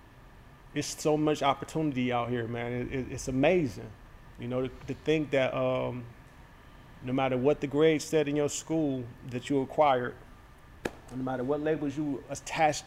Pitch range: 120-145 Hz